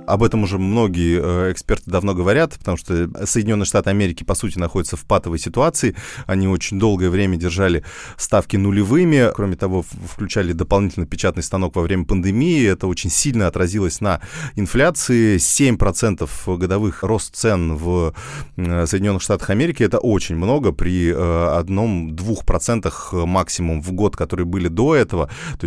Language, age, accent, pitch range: Russian, 20-39, native, 90-110 Hz